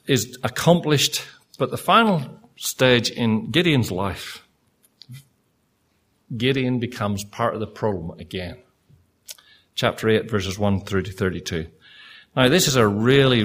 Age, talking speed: 50-69, 125 wpm